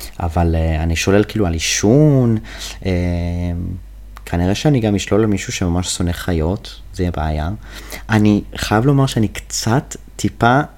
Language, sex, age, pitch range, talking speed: Hebrew, male, 30-49, 95-115 Hz, 145 wpm